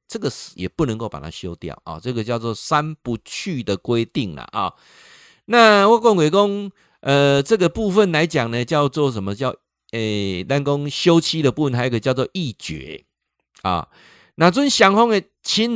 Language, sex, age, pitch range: Chinese, male, 50-69, 115-165 Hz